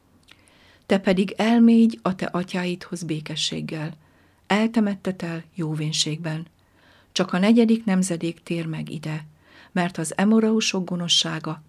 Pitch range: 155-195 Hz